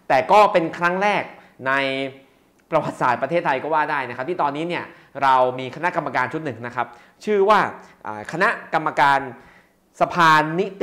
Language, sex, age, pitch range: Thai, male, 20-39, 120-155 Hz